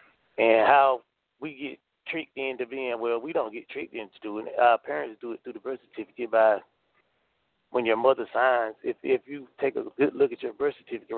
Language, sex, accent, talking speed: English, male, American, 210 wpm